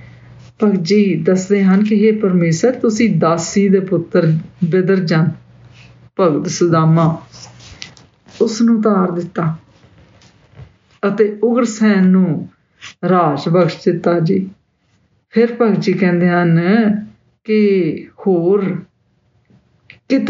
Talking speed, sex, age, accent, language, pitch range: 70 wpm, female, 50-69, Indian, English, 160-205 Hz